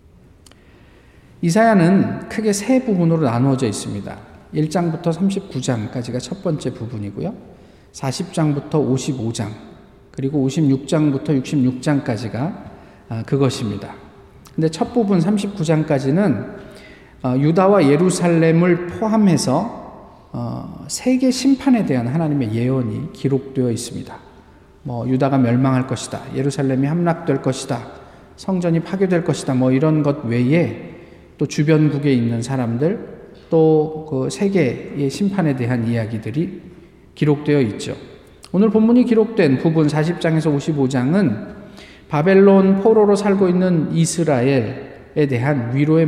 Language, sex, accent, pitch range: Korean, male, native, 125-170 Hz